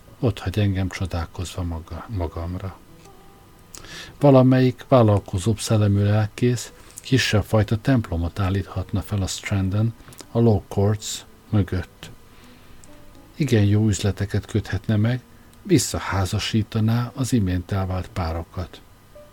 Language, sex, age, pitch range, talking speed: Hungarian, male, 50-69, 95-115 Hz, 95 wpm